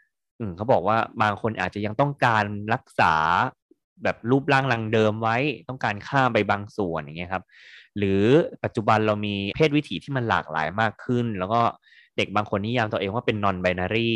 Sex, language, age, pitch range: male, Thai, 20-39, 90-115 Hz